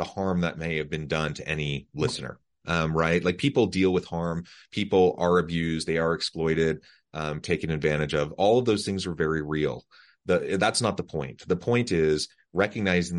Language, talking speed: English, 195 wpm